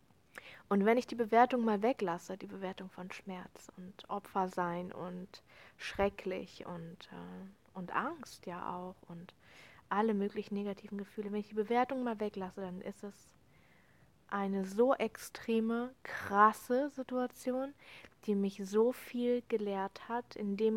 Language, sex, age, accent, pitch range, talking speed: German, female, 20-39, German, 190-225 Hz, 140 wpm